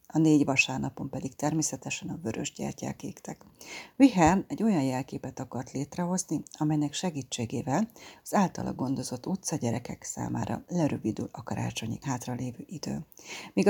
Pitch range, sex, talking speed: 140-170 Hz, female, 125 wpm